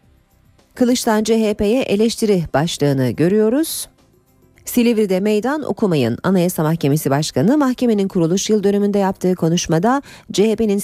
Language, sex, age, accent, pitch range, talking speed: Turkish, female, 40-59, native, 165-230 Hz, 100 wpm